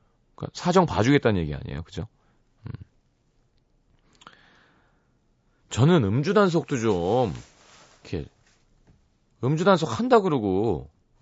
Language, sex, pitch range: Korean, male, 115-190 Hz